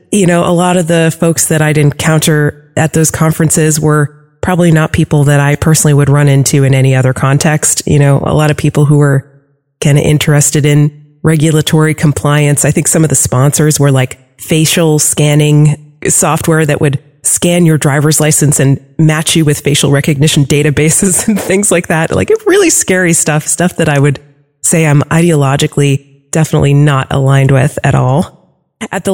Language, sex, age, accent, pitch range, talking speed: English, female, 30-49, American, 145-180 Hz, 180 wpm